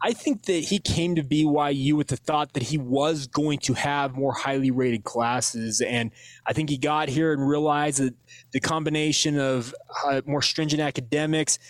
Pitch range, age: 125-150 Hz, 20-39